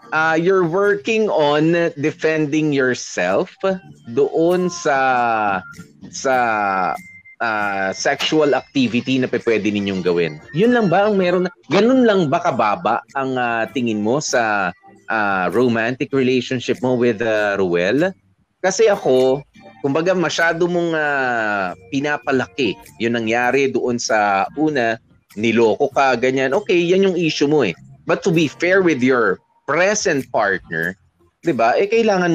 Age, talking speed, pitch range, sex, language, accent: 30-49, 130 wpm, 115-185 Hz, male, English, Filipino